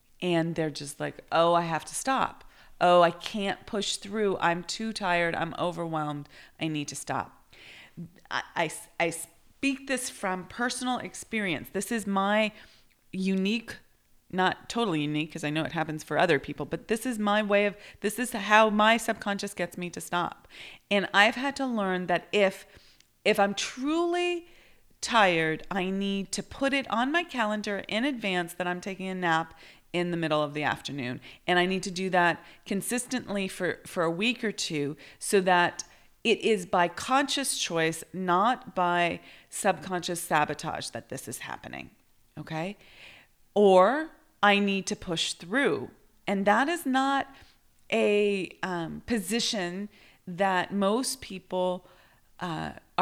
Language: English